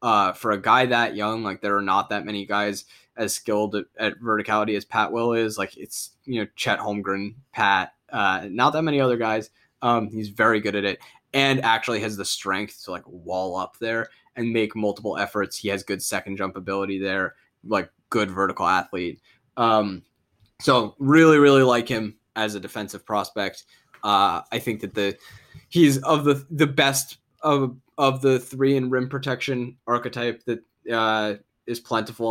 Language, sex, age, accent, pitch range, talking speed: English, male, 10-29, American, 105-130 Hz, 180 wpm